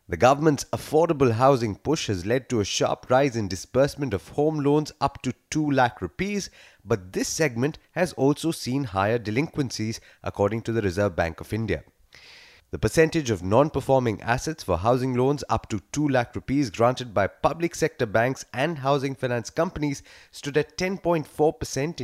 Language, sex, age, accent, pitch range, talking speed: English, male, 30-49, Indian, 105-145 Hz, 165 wpm